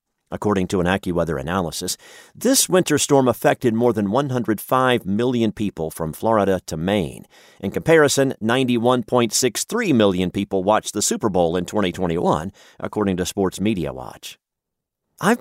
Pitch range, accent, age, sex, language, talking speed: 95-130 Hz, American, 40-59, male, English, 135 wpm